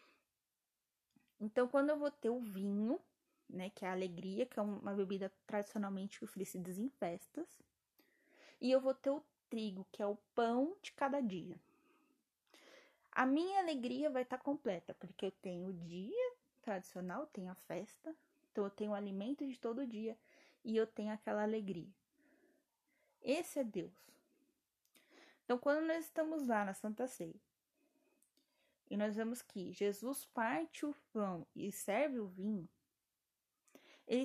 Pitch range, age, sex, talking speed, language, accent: 200-295 Hz, 10-29, female, 150 wpm, Portuguese, Brazilian